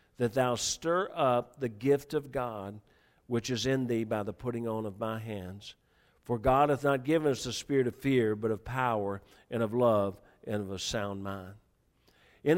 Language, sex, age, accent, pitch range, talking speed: English, male, 50-69, American, 110-130 Hz, 195 wpm